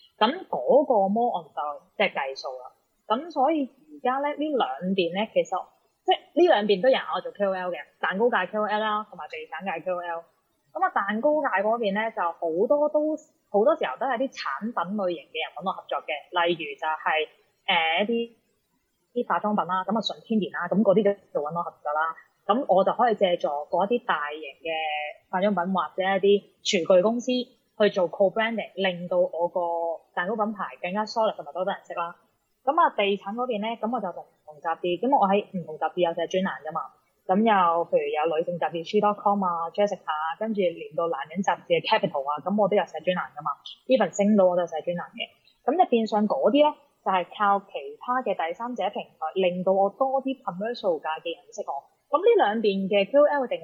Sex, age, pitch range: female, 20-39, 175-240 Hz